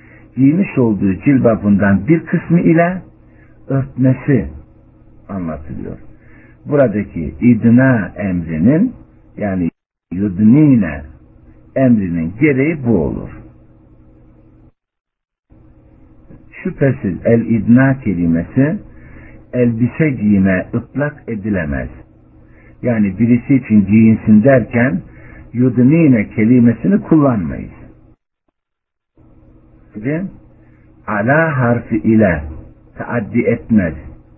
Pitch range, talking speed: 95-130 Hz, 65 wpm